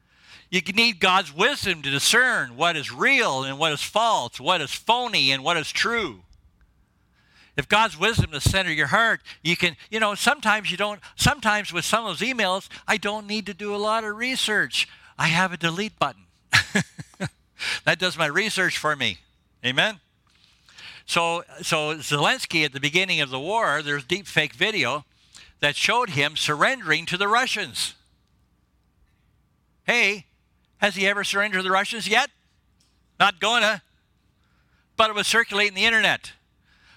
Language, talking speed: English, 155 wpm